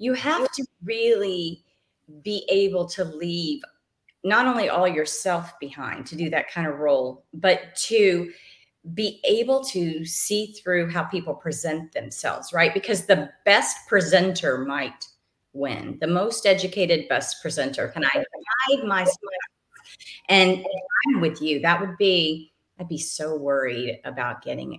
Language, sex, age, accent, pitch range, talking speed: English, female, 40-59, American, 155-200 Hz, 150 wpm